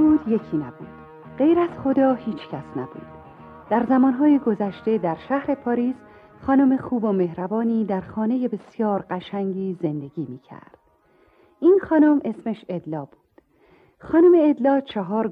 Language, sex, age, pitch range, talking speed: Persian, female, 40-59, 185-300 Hz, 125 wpm